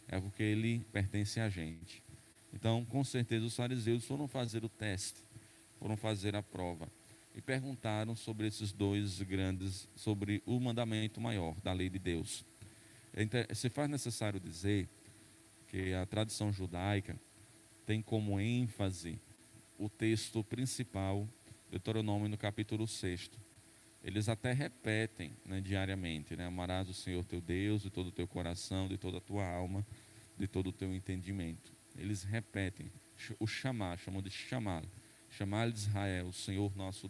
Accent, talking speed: Brazilian, 145 wpm